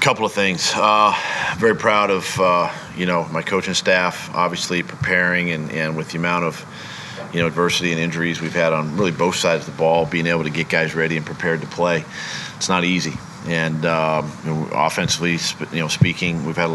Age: 40-59